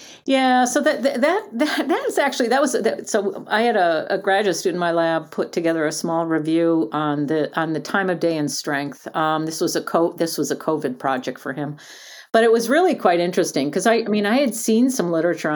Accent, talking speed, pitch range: American, 235 wpm, 155-215 Hz